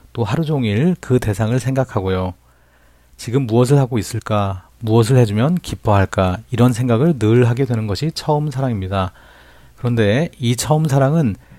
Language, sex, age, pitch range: Korean, male, 40-59, 100-135 Hz